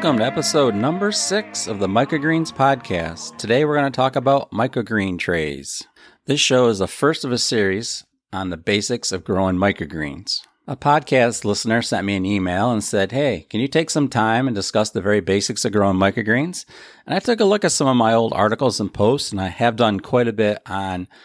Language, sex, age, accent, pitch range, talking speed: English, male, 40-59, American, 95-125 Hz, 210 wpm